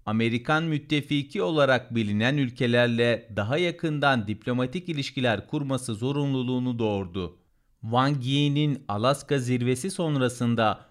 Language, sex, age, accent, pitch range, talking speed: Turkish, male, 40-59, native, 115-145 Hz, 95 wpm